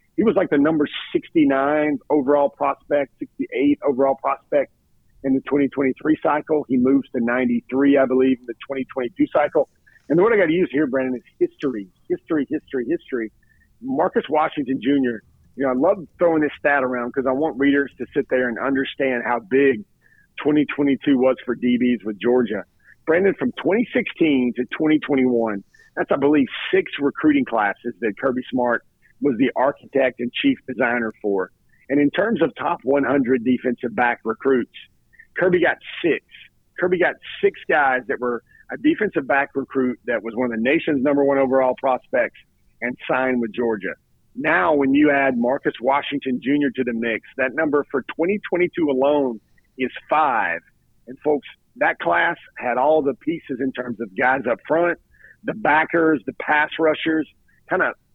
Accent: American